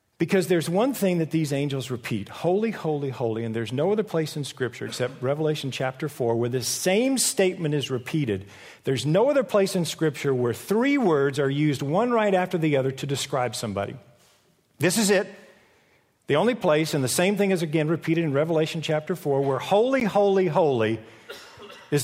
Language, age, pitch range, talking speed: English, 50-69, 130-175 Hz, 190 wpm